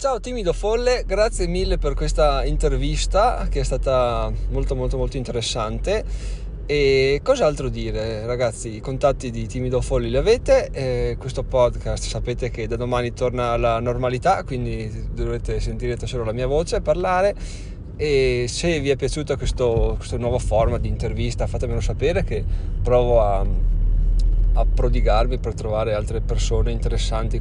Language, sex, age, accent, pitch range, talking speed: Italian, male, 20-39, native, 110-130 Hz, 145 wpm